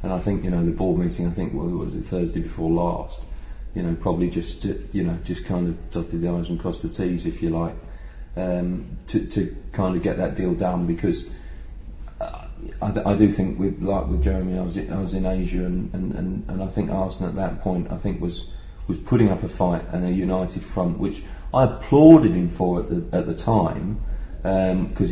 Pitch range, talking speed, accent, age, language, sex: 85-105 Hz, 220 wpm, British, 40-59, English, male